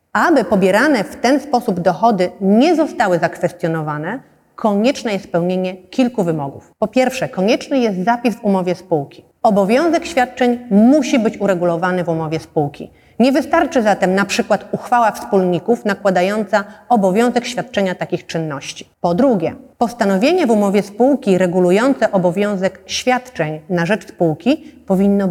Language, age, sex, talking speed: Polish, 40-59, female, 130 wpm